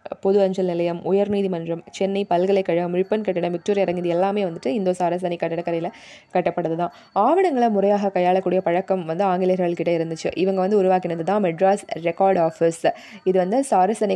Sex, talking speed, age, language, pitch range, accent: female, 150 wpm, 20-39, Tamil, 175-210 Hz, native